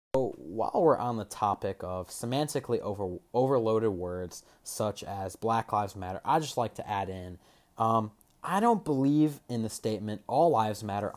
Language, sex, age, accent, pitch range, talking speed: English, male, 20-39, American, 105-145 Hz, 170 wpm